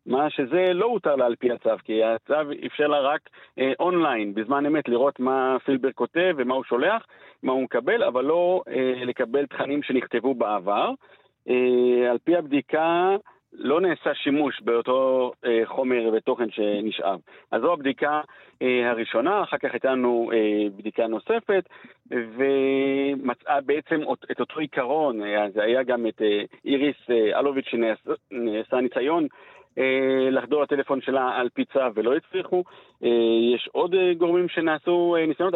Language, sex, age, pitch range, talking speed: Hebrew, male, 50-69, 120-150 Hz, 145 wpm